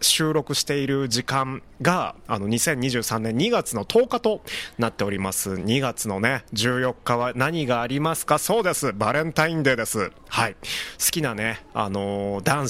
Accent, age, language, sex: native, 20-39, Japanese, male